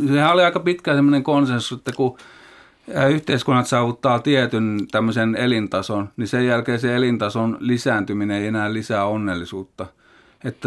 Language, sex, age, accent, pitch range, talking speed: Finnish, male, 30-49, native, 110-130 Hz, 135 wpm